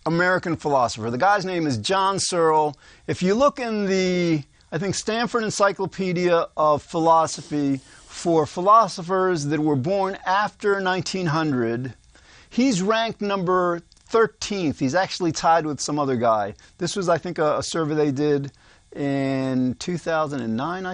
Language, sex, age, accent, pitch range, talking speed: English, male, 40-59, American, 145-195 Hz, 140 wpm